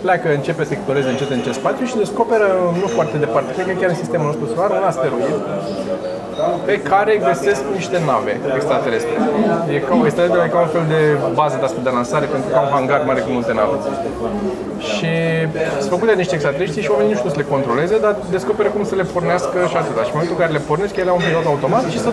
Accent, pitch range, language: native, 145-195 Hz, Romanian